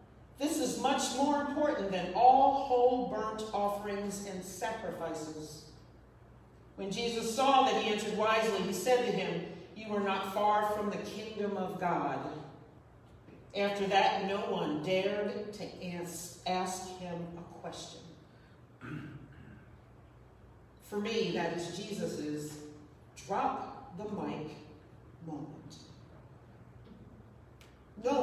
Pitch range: 155-230 Hz